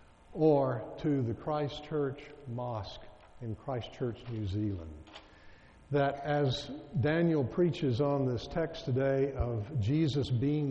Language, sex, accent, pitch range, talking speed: English, male, American, 115-145 Hz, 110 wpm